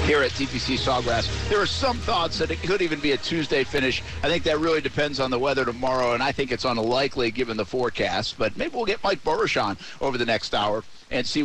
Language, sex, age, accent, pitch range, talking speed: English, male, 50-69, American, 115-140 Hz, 240 wpm